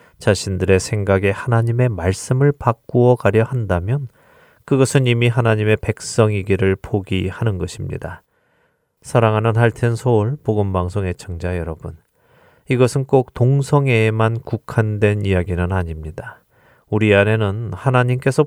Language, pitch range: Korean, 95-125 Hz